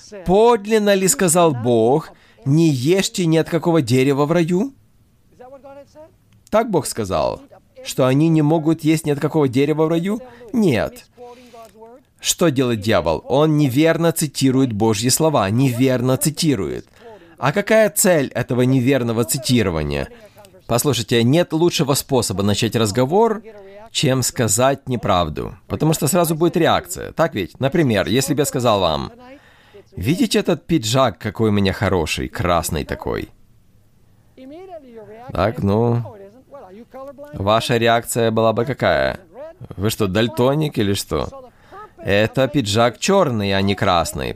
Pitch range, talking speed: 115-180 Hz, 125 wpm